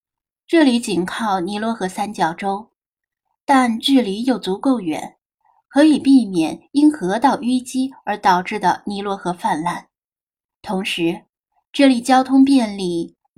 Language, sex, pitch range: Chinese, female, 195-285 Hz